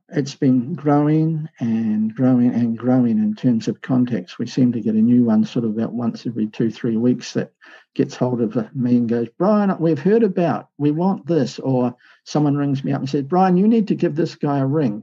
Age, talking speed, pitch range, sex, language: 50-69, 225 wpm, 120-145 Hz, male, English